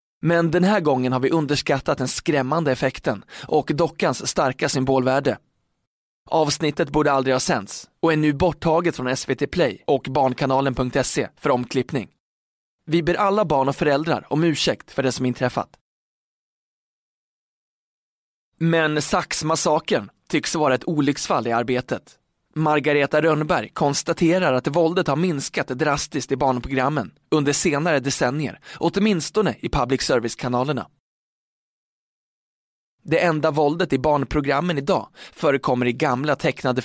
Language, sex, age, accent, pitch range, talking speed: Swedish, male, 20-39, native, 130-160 Hz, 125 wpm